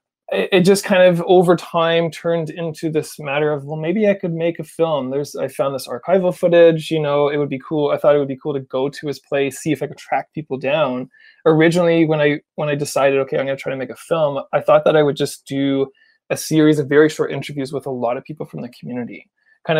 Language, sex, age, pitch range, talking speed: English, male, 20-39, 140-165 Hz, 260 wpm